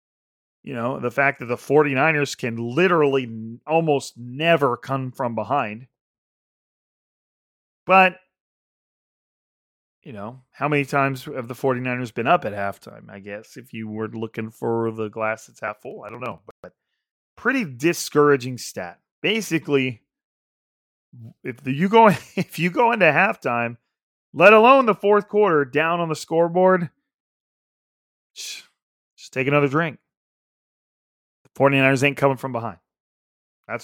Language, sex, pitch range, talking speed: English, male, 120-155 Hz, 135 wpm